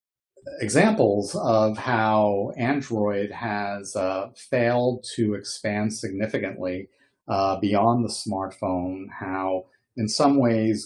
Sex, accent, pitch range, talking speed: male, American, 100-115 Hz, 100 wpm